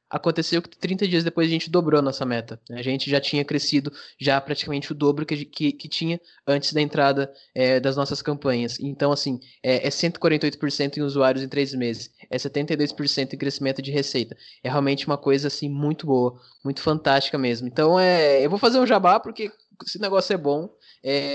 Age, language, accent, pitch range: 10-29, Portuguese, Brazilian, 135-170 Hz